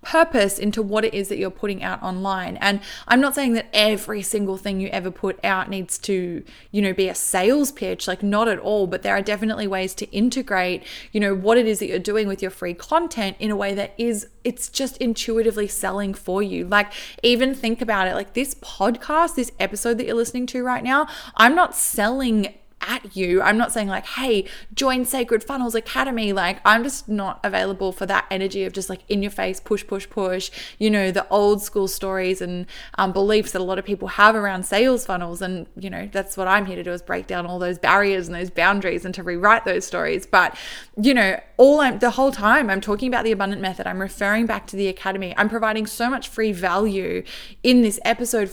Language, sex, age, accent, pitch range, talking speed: English, female, 20-39, Australian, 190-230 Hz, 225 wpm